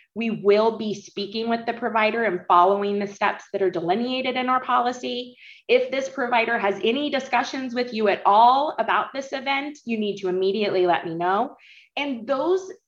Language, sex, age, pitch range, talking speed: English, female, 20-39, 195-260 Hz, 180 wpm